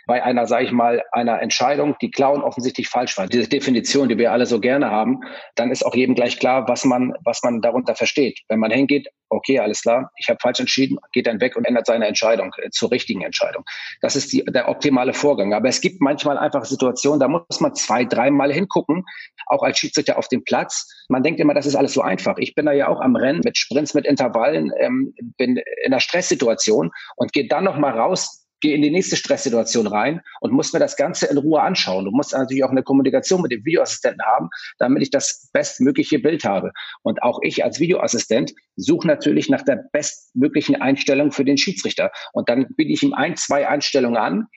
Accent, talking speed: German, 215 wpm